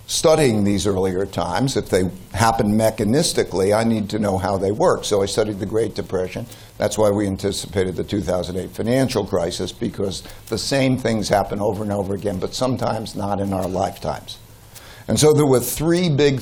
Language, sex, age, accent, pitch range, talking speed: English, male, 60-79, American, 105-125 Hz, 185 wpm